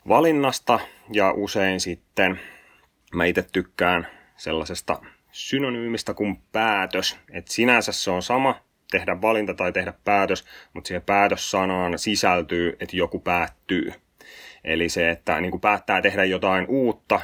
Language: Finnish